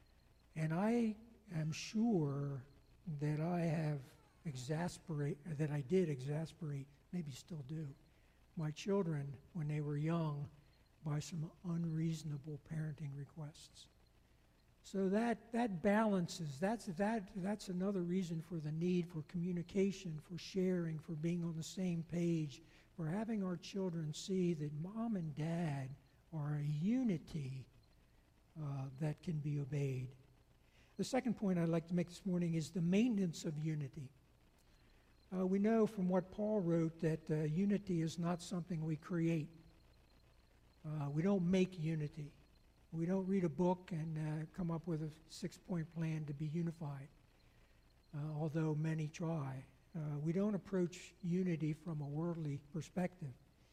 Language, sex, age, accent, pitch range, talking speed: English, male, 60-79, American, 150-180 Hz, 145 wpm